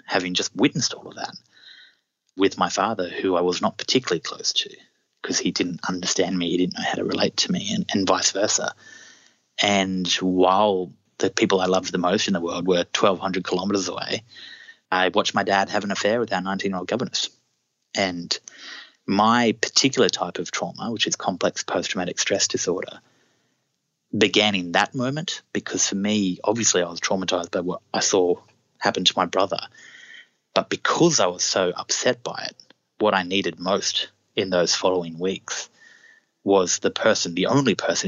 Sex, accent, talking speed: male, Australian, 175 wpm